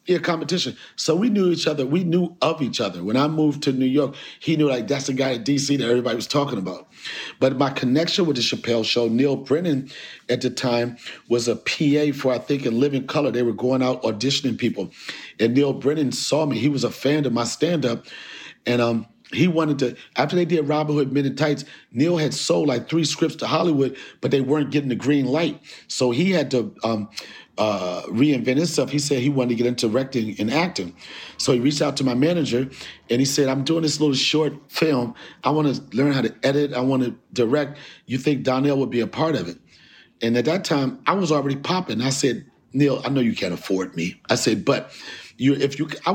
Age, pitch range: 50-69, 125-150 Hz